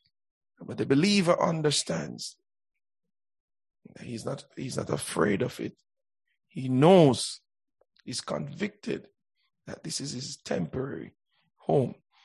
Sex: male